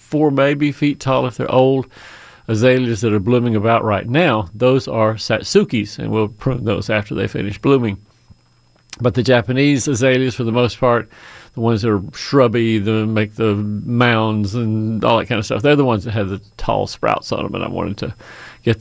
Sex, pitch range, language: male, 110-140 Hz, English